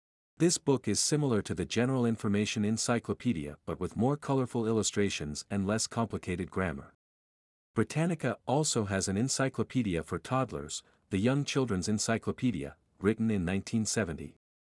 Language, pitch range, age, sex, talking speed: English, 90-125 Hz, 50-69, male, 130 wpm